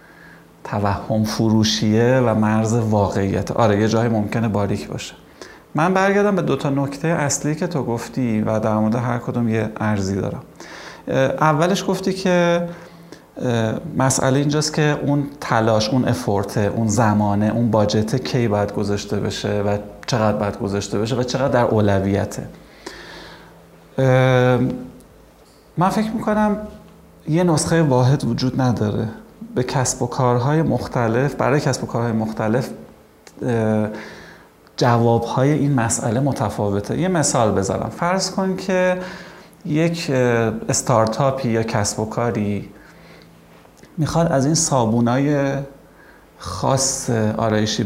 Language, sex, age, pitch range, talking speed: Persian, male, 30-49, 110-150 Hz, 120 wpm